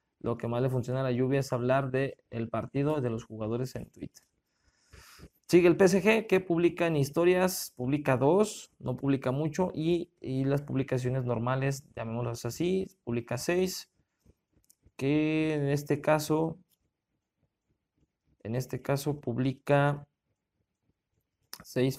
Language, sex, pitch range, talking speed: Spanish, male, 125-145 Hz, 130 wpm